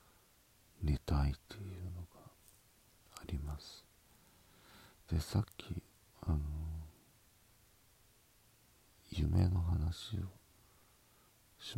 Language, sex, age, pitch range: Japanese, male, 50-69, 80-105 Hz